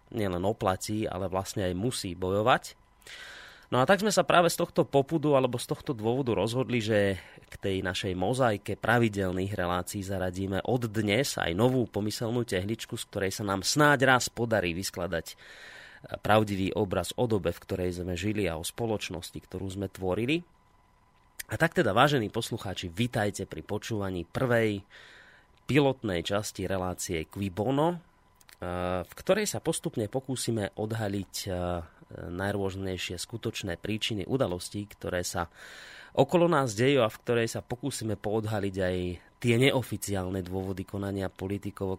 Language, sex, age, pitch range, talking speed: Slovak, male, 30-49, 95-125 Hz, 140 wpm